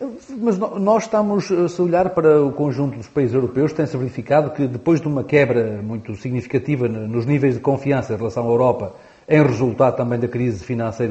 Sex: male